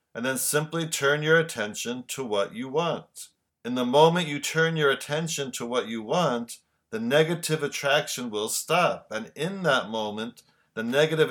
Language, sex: English, male